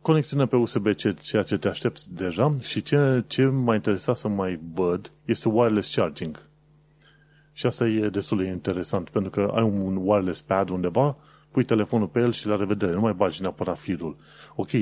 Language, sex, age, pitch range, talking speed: Romanian, male, 30-49, 95-125 Hz, 180 wpm